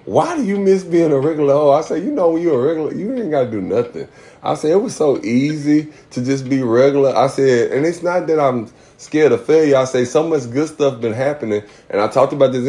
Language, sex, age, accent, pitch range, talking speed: English, male, 30-49, American, 115-150 Hz, 260 wpm